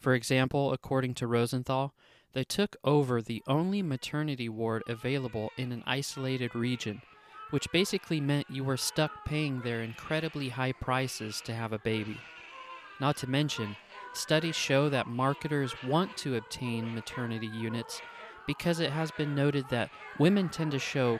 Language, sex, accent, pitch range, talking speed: English, male, American, 120-150 Hz, 155 wpm